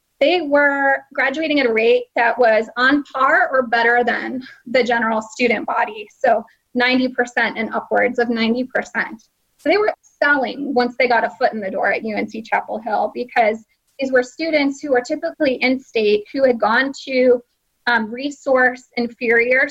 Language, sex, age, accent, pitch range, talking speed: English, female, 20-39, American, 235-275 Hz, 165 wpm